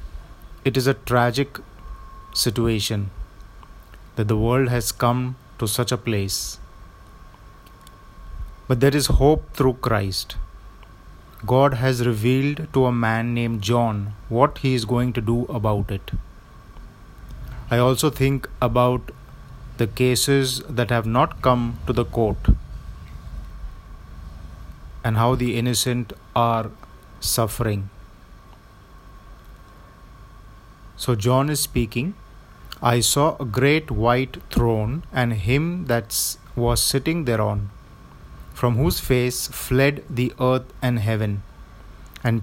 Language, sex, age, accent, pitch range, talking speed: Hindi, male, 30-49, native, 105-130 Hz, 115 wpm